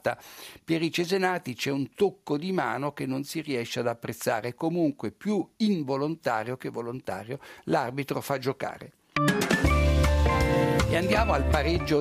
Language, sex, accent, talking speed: Italian, male, native, 130 wpm